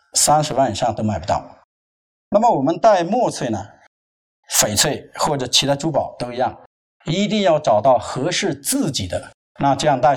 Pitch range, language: 110-155 Hz, Chinese